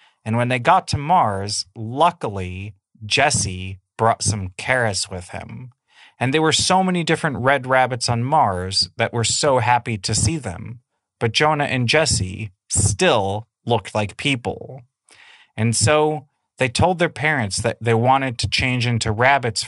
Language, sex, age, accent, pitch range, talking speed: English, male, 30-49, American, 105-140 Hz, 155 wpm